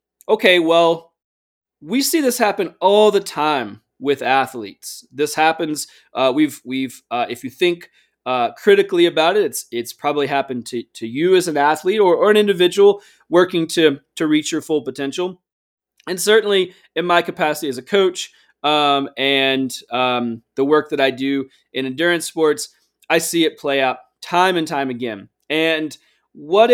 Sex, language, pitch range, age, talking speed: male, English, 140-190 Hz, 20-39, 170 wpm